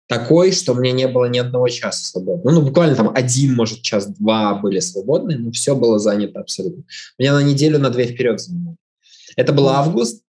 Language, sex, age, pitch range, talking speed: Russian, male, 20-39, 120-160 Hz, 205 wpm